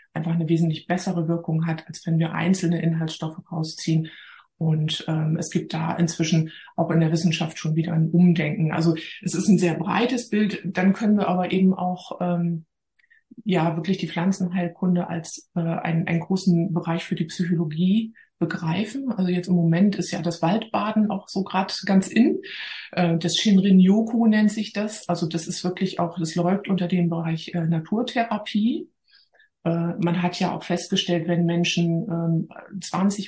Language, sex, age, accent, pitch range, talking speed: German, female, 20-39, German, 170-190 Hz, 170 wpm